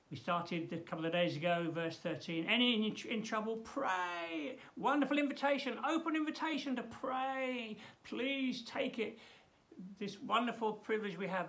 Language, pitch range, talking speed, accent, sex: English, 165-255 Hz, 145 wpm, British, male